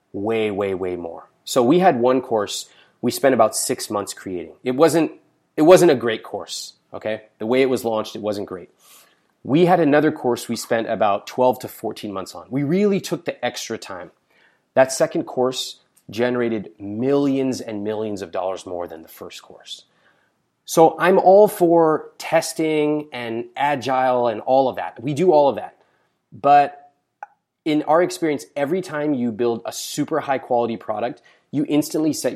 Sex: male